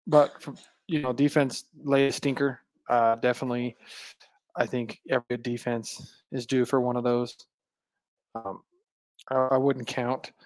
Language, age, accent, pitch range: English, 20-39, American, 125-145 Hz